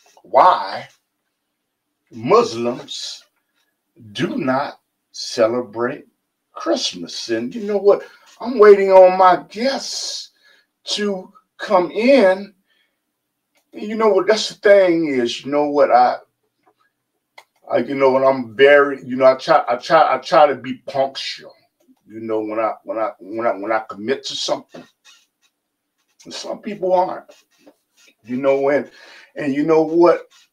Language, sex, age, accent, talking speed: English, male, 50-69, American, 140 wpm